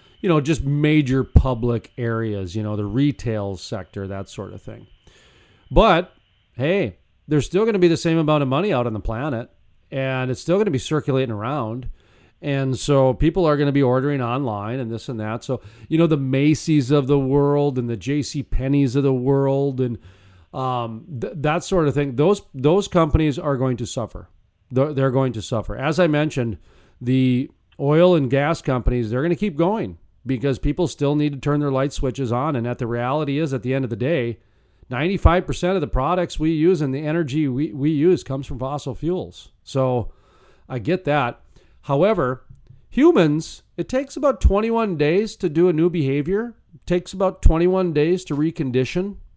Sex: male